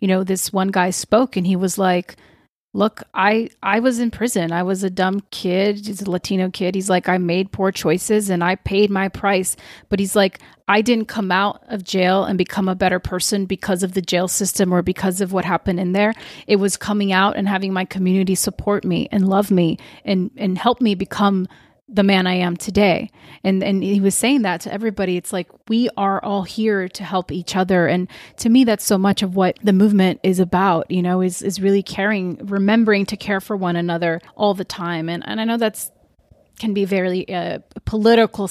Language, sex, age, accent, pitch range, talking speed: English, female, 30-49, American, 180-205 Hz, 220 wpm